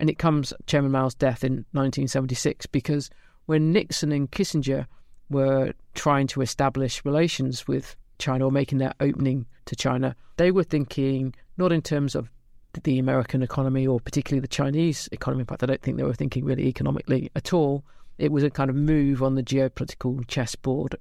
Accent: British